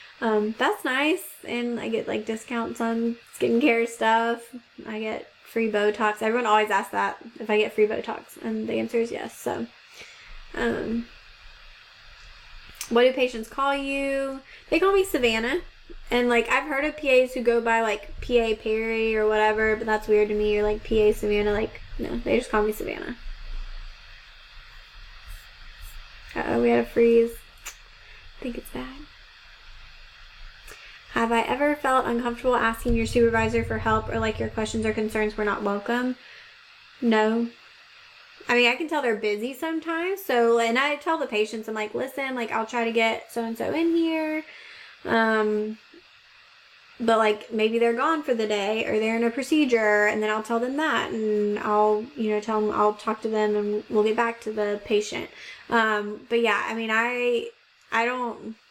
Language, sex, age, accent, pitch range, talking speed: English, female, 20-39, American, 215-245 Hz, 175 wpm